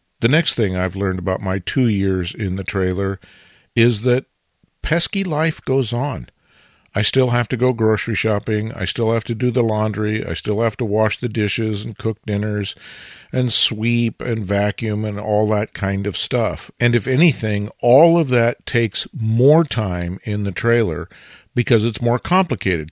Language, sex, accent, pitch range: English, male, American, 100-120 Hz